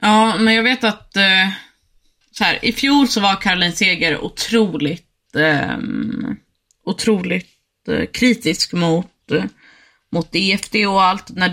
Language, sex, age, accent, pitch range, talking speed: Swedish, female, 20-39, native, 165-205 Hz, 115 wpm